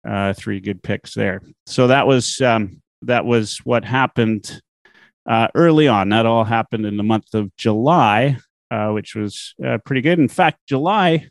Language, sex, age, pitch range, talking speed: English, male, 30-49, 105-125 Hz, 175 wpm